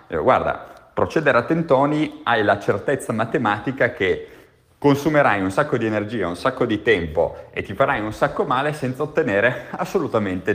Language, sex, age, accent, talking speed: Italian, male, 30-49, native, 155 wpm